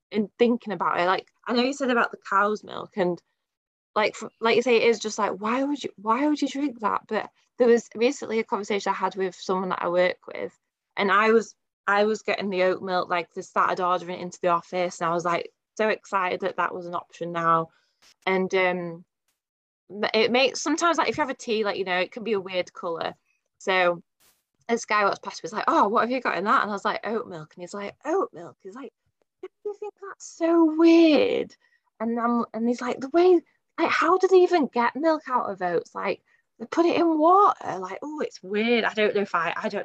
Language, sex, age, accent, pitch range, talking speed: English, female, 20-39, British, 190-300 Hz, 240 wpm